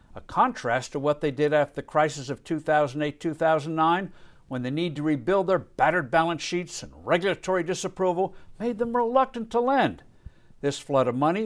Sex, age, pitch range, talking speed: male, 60-79, 140-195 Hz, 170 wpm